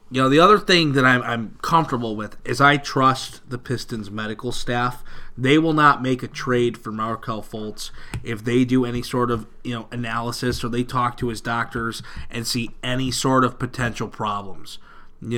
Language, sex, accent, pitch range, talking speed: English, male, American, 115-135 Hz, 190 wpm